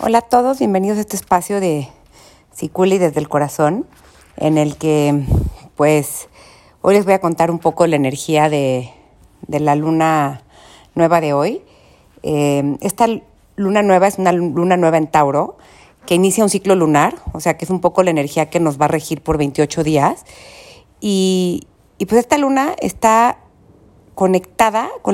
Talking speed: 170 wpm